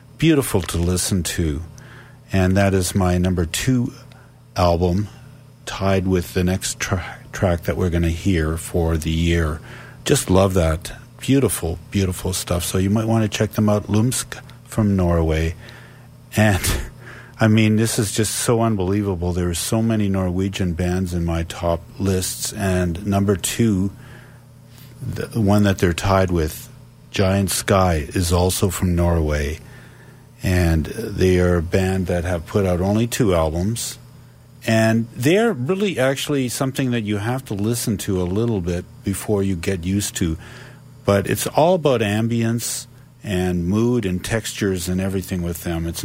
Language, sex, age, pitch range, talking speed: English, male, 50-69, 90-120 Hz, 155 wpm